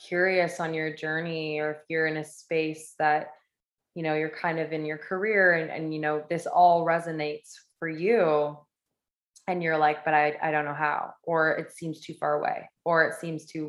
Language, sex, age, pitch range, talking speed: English, female, 20-39, 160-180 Hz, 205 wpm